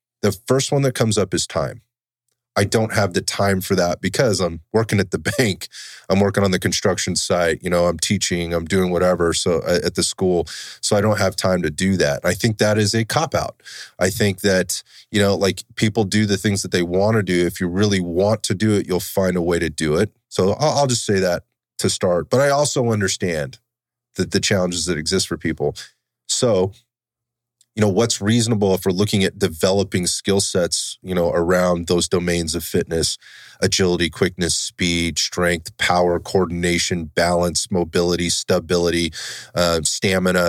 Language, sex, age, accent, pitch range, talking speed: English, male, 30-49, American, 90-110 Hz, 195 wpm